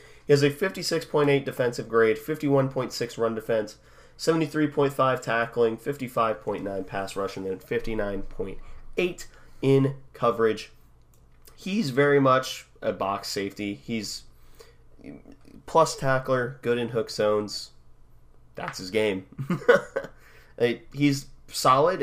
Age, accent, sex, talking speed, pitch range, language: 30-49, American, male, 100 wpm, 100-135 Hz, English